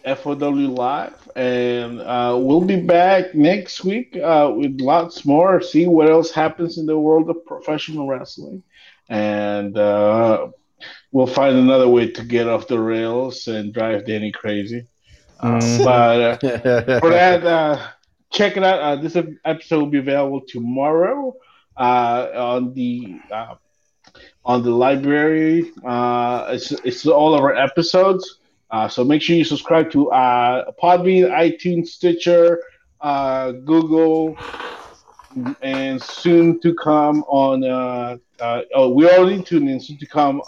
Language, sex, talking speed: English, male, 140 wpm